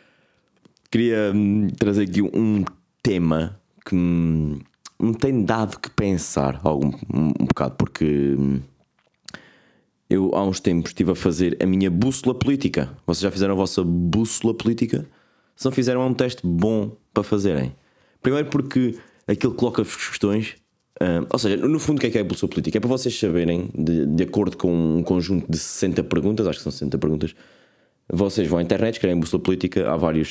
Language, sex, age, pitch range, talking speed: Portuguese, male, 20-39, 85-115 Hz, 180 wpm